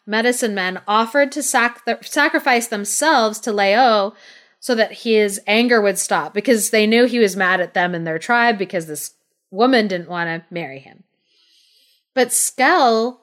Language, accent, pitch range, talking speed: English, American, 190-245 Hz, 170 wpm